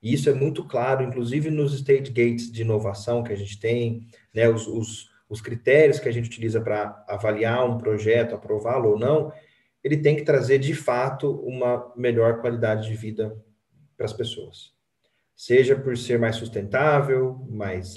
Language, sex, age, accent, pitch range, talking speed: Portuguese, male, 30-49, Brazilian, 110-145 Hz, 165 wpm